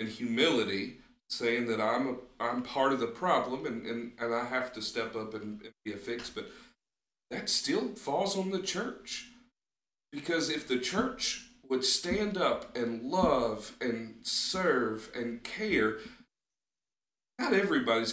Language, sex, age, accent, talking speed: English, male, 40-59, American, 150 wpm